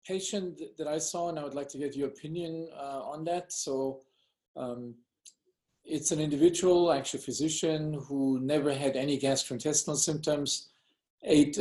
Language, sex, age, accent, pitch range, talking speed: English, male, 40-59, German, 135-160 Hz, 155 wpm